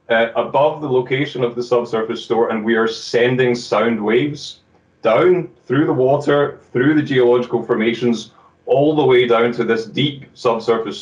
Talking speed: 165 wpm